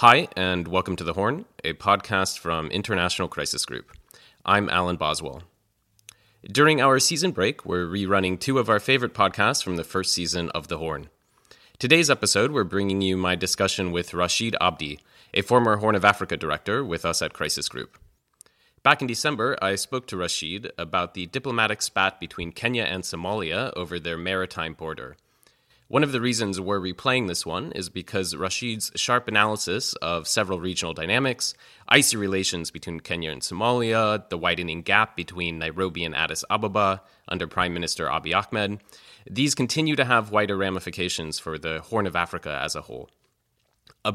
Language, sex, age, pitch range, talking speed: English, male, 30-49, 85-110 Hz, 170 wpm